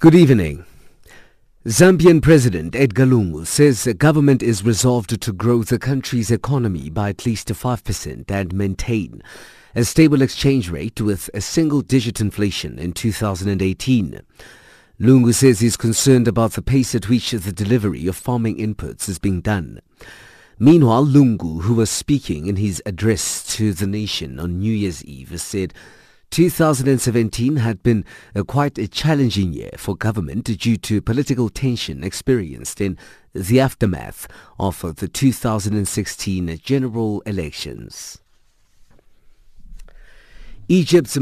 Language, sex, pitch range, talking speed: English, male, 100-130 Hz, 130 wpm